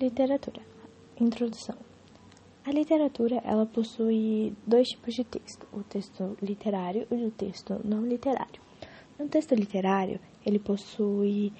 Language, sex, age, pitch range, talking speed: English, female, 10-29, 205-240 Hz, 120 wpm